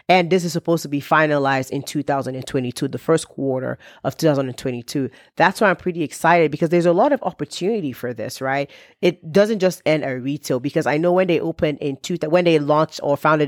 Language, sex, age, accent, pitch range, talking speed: English, female, 30-49, American, 140-180 Hz, 210 wpm